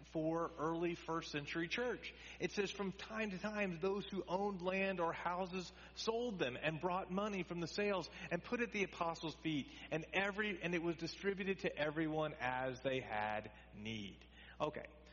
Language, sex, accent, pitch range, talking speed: English, male, American, 115-175 Hz, 170 wpm